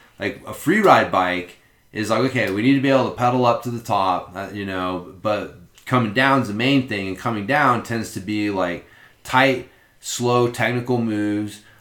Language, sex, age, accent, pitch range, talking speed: English, male, 30-49, American, 95-120 Hz, 205 wpm